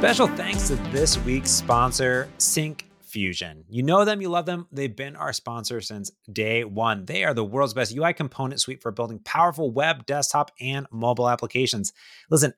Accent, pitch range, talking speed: American, 115-160 Hz, 175 wpm